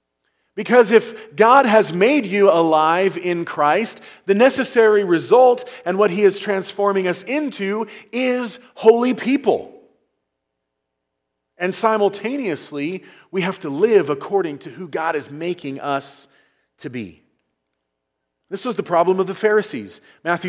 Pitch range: 145-230 Hz